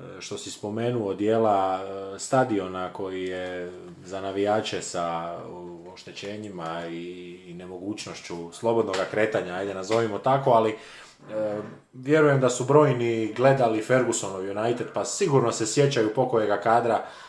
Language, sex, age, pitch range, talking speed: Croatian, male, 20-39, 100-120 Hz, 110 wpm